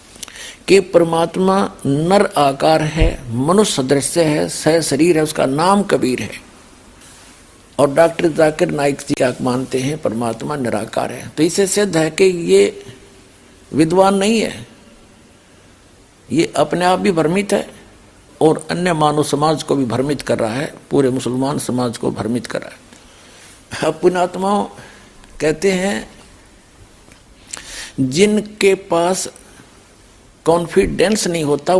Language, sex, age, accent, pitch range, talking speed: Hindi, male, 60-79, native, 130-185 Hz, 125 wpm